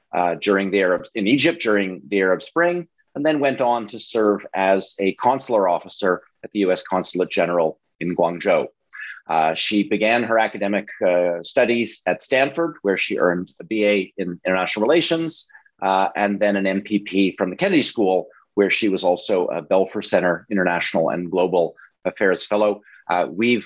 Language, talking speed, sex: English, 170 wpm, male